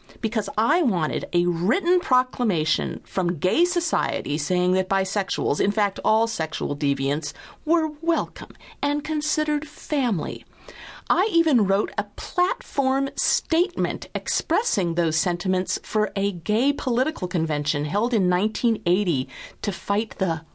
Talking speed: 125 wpm